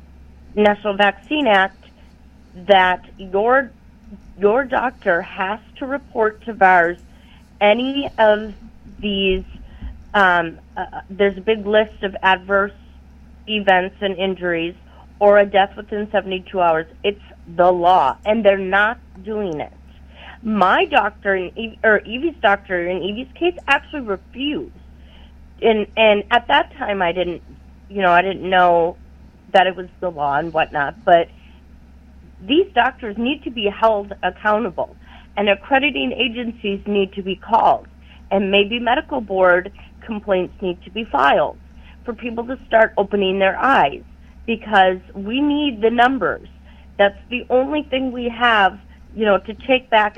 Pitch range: 185-225 Hz